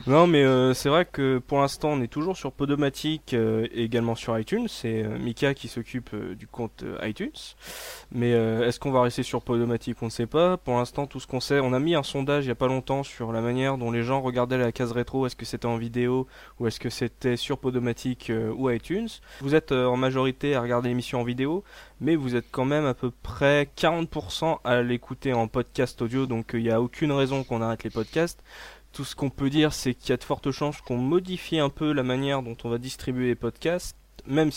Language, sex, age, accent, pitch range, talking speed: French, male, 20-39, French, 120-150 Hz, 235 wpm